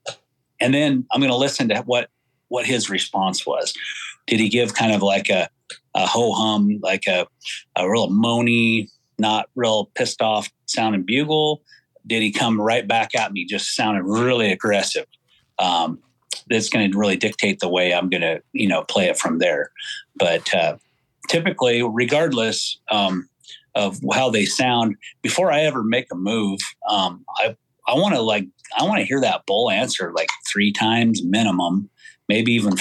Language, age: English, 40-59